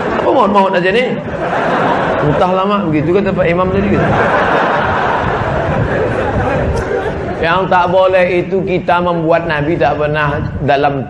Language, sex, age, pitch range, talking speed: Indonesian, male, 30-49, 130-180 Hz, 110 wpm